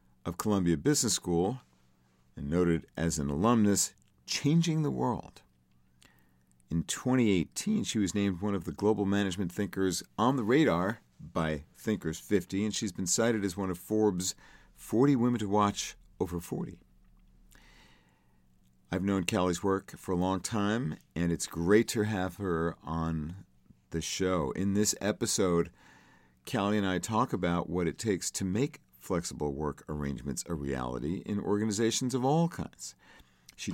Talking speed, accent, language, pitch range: 150 wpm, American, English, 65-110 Hz